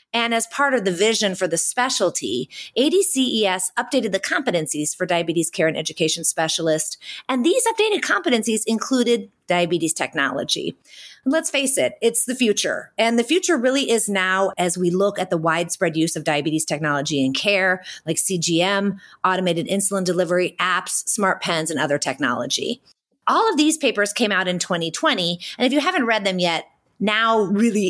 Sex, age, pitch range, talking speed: female, 30-49, 175-235 Hz, 170 wpm